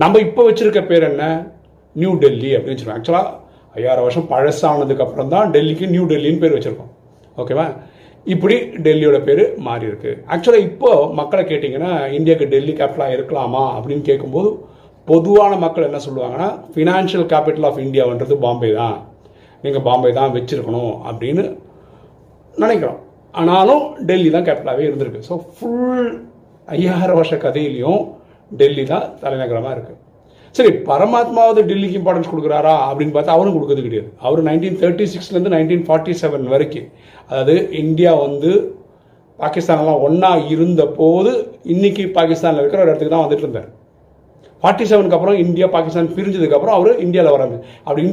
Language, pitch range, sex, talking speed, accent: Tamil, 145-195 Hz, male, 95 wpm, native